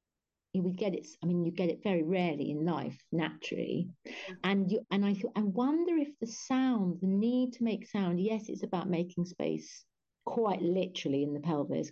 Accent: British